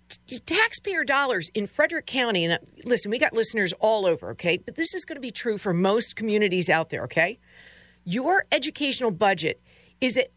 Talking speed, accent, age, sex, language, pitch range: 180 wpm, American, 50-69, female, English, 160-255 Hz